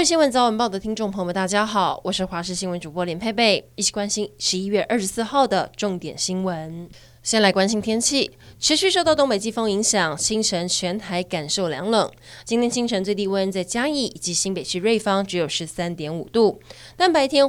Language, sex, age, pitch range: Chinese, female, 20-39, 185-235 Hz